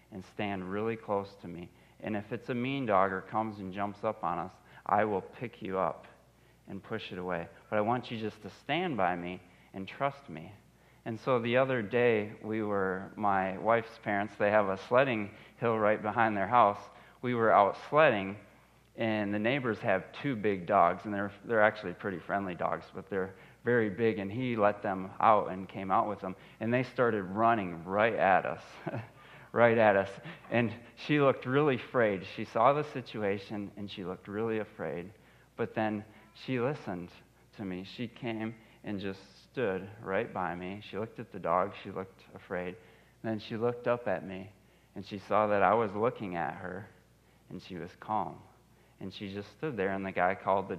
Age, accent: 30-49, American